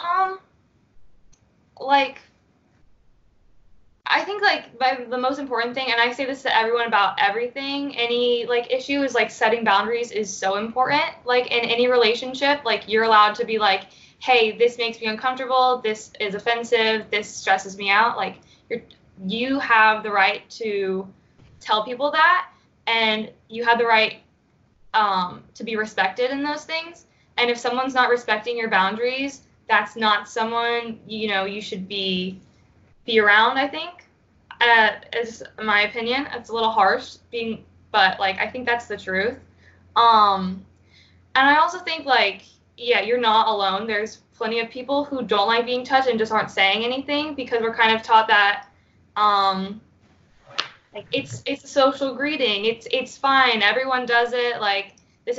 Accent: American